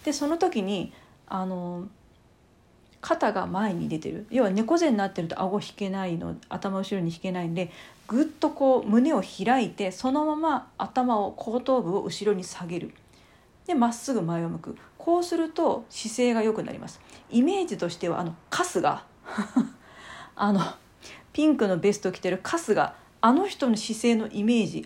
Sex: female